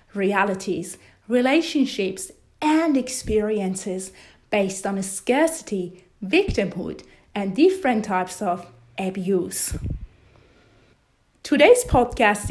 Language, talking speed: English, 75 wpm